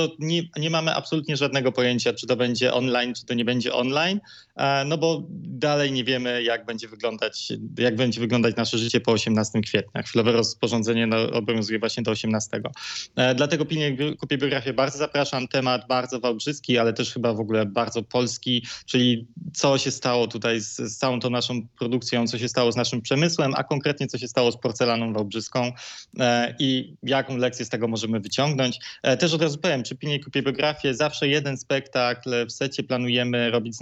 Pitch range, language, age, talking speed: 115-140 Hz, Polish, 20-39, 190 wpm